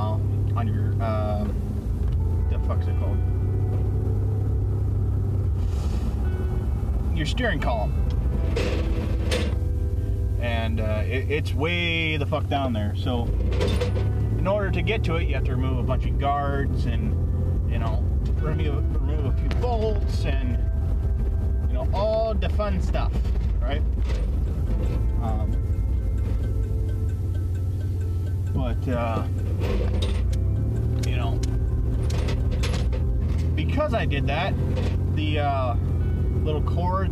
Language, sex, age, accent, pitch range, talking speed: English, male, 30-49, American, 85-100 Hz, 90 wpm